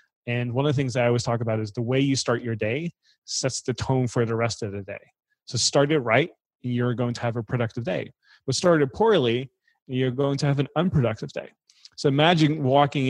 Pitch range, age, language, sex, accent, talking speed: 120-145 Hz, 30-49, English, male, American, 245 wpm